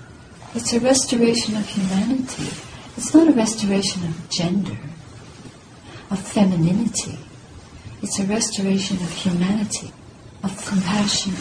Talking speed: 105 wpm